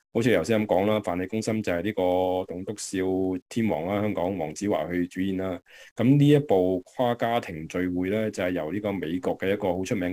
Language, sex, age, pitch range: Chinese, male, 20-39, 90-110 Hz